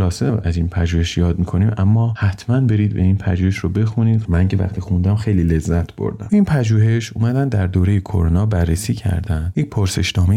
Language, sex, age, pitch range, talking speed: Persian, male, 30-49, 90-110 Hz, 175 wpm